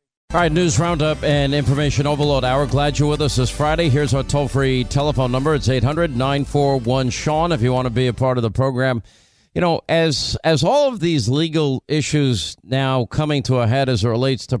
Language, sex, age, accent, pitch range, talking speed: English, male, 50-69, American, 120-145 Hz, 200 wpm